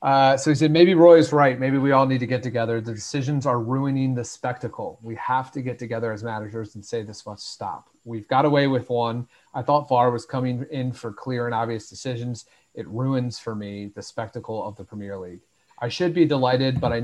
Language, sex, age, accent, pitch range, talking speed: English, male, 30-49, American, 110-130 Hz, 230 wpm